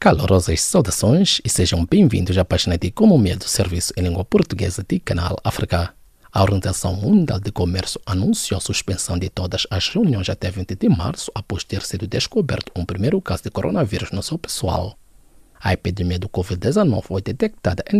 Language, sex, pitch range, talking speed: English, male, 95-140 Hz, 175 wpm